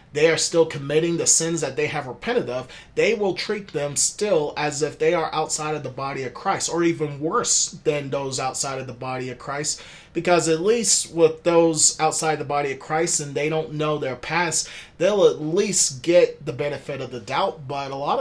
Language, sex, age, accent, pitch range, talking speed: English, male, 30-49, American, 145-175 Hz, 215 wpm